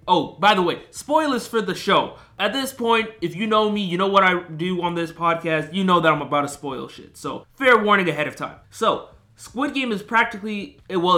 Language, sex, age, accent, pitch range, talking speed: English, male, 20-39, American, 145-195 Hz, 230 wpm